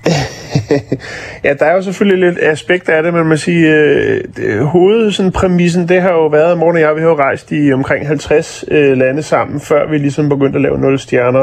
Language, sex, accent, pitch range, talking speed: Danish, male, native, 125-155 Hz, 210 wpm